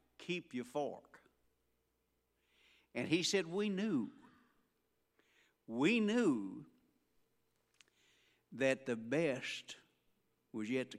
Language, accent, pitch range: English, American, 125-180 Hz